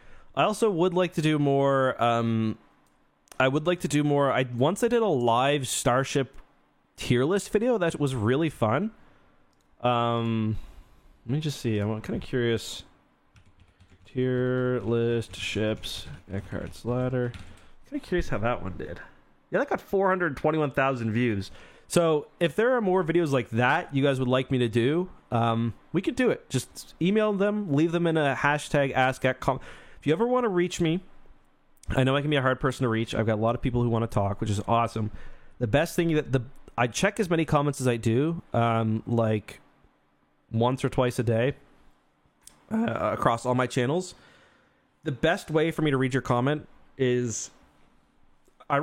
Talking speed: 190 wpm